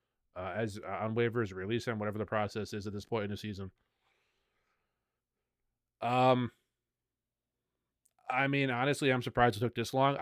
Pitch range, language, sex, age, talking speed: 100-125 Hz, English, male, 30-49, 160 wpm